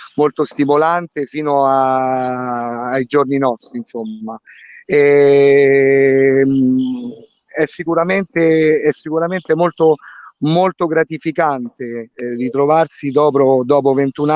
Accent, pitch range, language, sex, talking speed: native, 130-155 Hz, Italian, male, 70 wpm